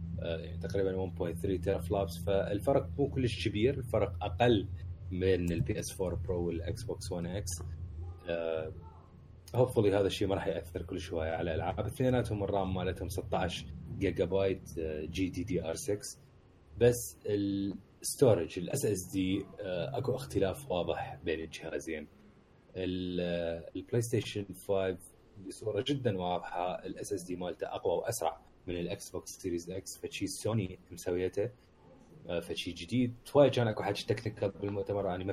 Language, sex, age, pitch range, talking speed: Arabic, male, 30-49, 90-110 Hz, 140 wpm